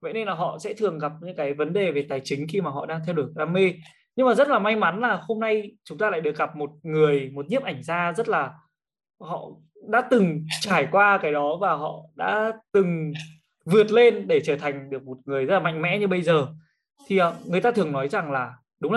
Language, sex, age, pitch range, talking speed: Vietnamese, male, 20-39, 150-205 Hz, 245 wpm